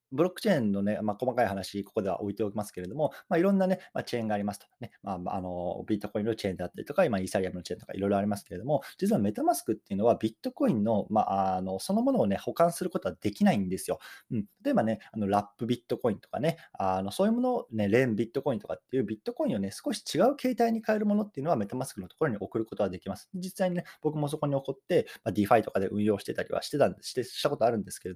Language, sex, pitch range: Japanese, male, 100-155 Hz